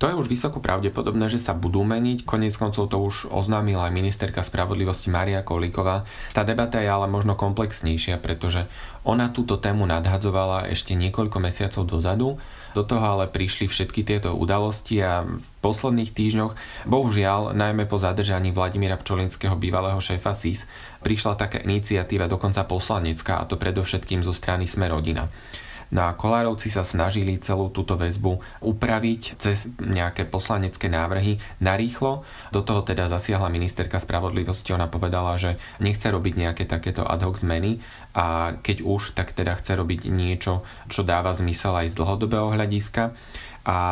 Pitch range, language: 90-105 Hz, Slovak